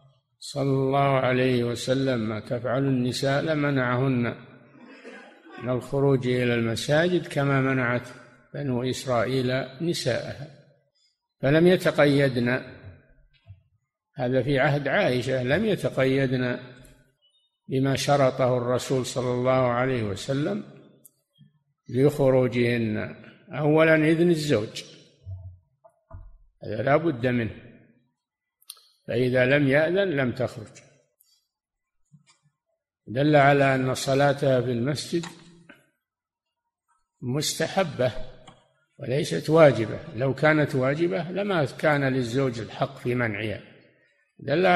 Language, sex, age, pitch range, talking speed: Arabic, male, 50-69, 125-150 Hz, 85 wpm